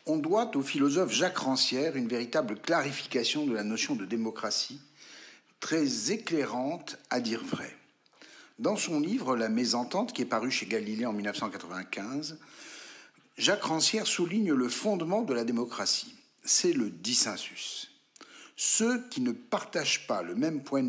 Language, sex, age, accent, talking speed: French, male, 60-79, French, 145 wpm